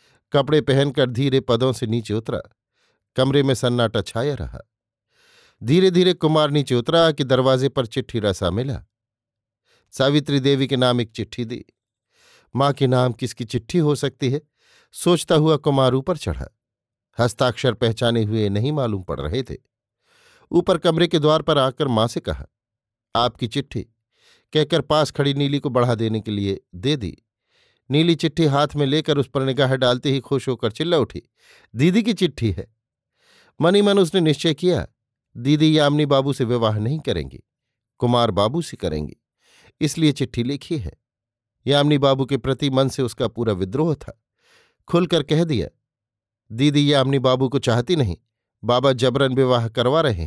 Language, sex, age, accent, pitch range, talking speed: Hindi, male, 50-69, native, 115-150 Hz, 160 wpm